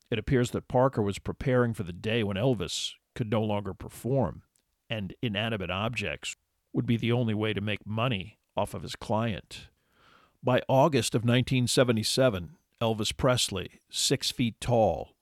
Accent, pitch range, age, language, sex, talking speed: American, 100-125 Hz, 50-69, English, male, 155 wpm